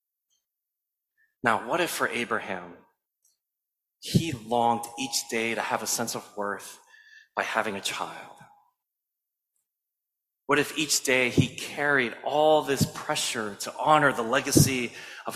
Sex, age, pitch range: male, 30-49, 120-175 Hz